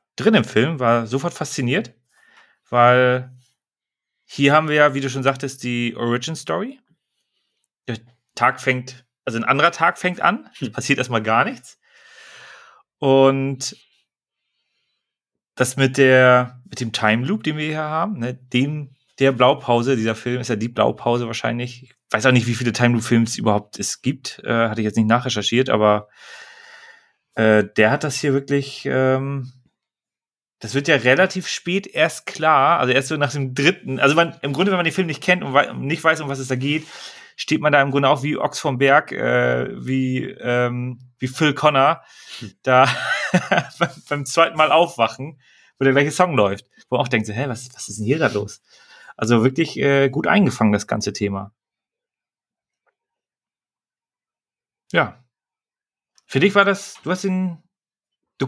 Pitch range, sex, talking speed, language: 120-155 Hz, male, 170 wpm, German